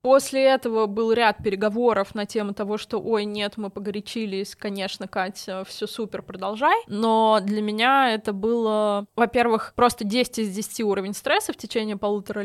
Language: Russian